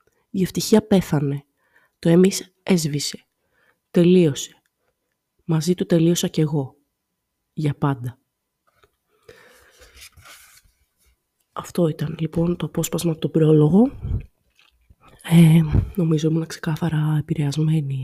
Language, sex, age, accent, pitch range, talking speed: Greek, female, 20-39, native, 155-185 Hz, 90 wpm